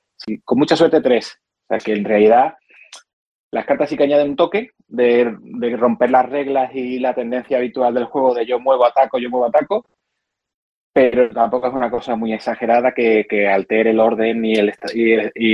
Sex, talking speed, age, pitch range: male, 185 wpm, 30-49, 110-135 Hz